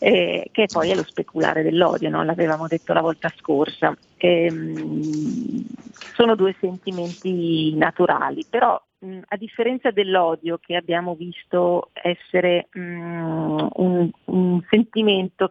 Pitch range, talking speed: 170-190 Hz, 105 wpm